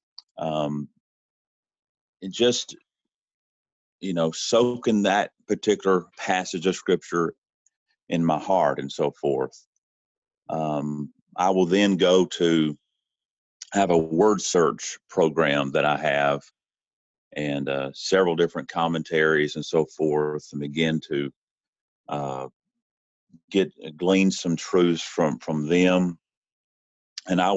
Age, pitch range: 40-59, 75-95 Hz